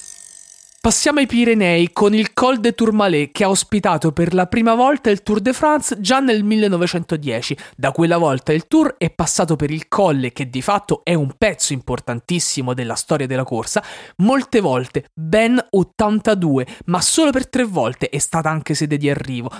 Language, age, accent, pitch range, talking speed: Italian, 30-49, native, 160-225 Hz, 180 wpm